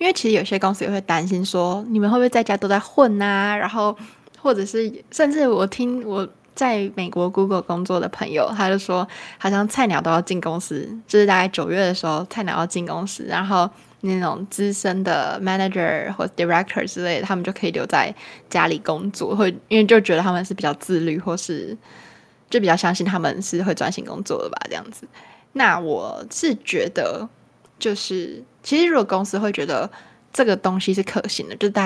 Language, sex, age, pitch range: Chinese, female, 20-39, 180-215 Hz